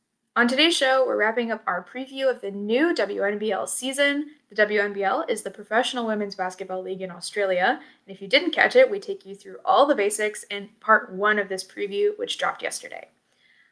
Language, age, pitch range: English, 10-29, 205-270 Hz